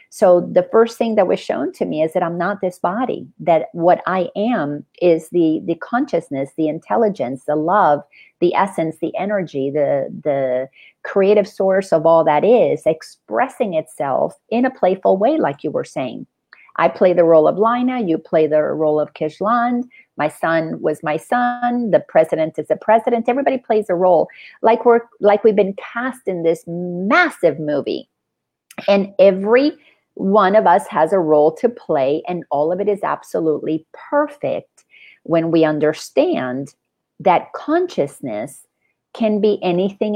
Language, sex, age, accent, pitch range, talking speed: English, female, 50-69, American, 160-230 Hz, 165 wpm